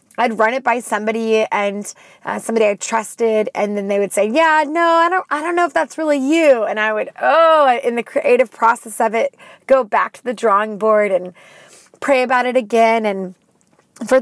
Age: 30-49